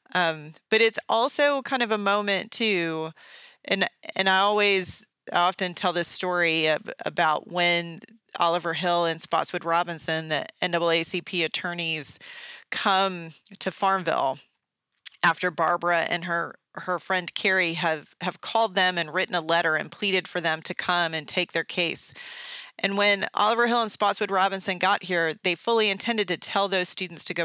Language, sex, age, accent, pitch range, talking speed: English, female, 30-49, American, 170-205 Hz, 160 wpm